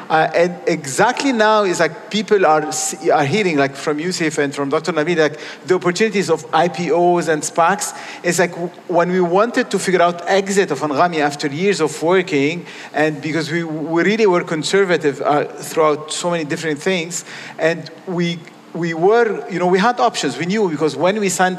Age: 50-69